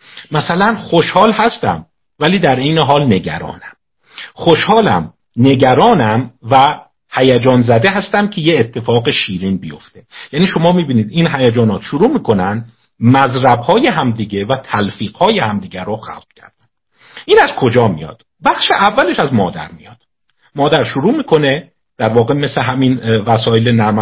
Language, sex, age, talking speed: Persian, male, 50-69, 130 wpm